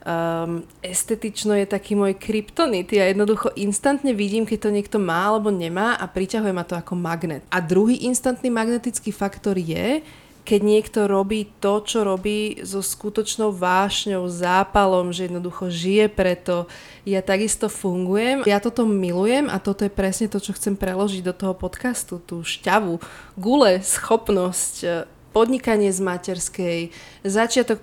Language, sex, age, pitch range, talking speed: Slovak, female, 30-49, 185-210 Hz, 145 wpm